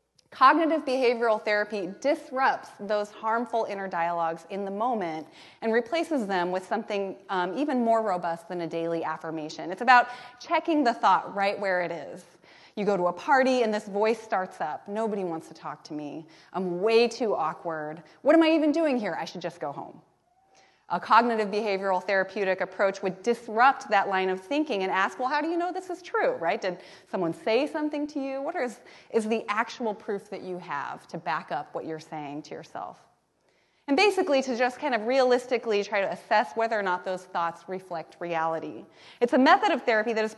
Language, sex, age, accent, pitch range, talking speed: English, female, 30-49, American, 185-265 Hz, 200 wpm